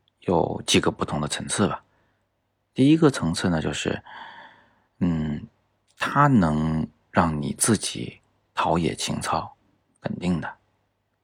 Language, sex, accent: Chinese, male, native